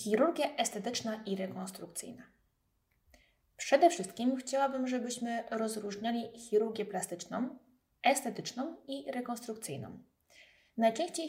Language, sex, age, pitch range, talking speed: Polish, female, 20-39, 195-265 Hz, 80 wpm